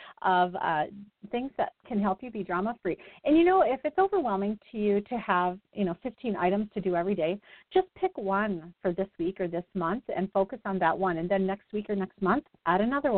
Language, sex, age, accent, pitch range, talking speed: English, female, 40-59, American, 175-240 Hz, 230 wpm